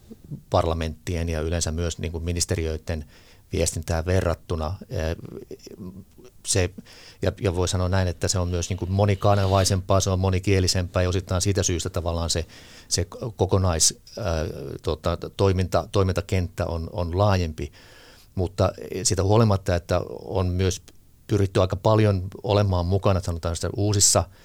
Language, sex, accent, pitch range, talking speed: Finnish, male, native, 85-100 Hz, 115 wpm